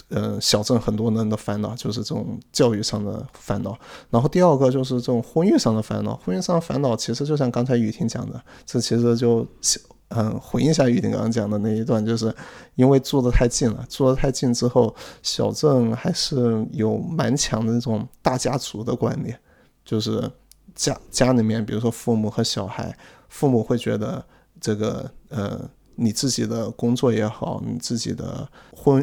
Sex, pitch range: male, 110-125 Hz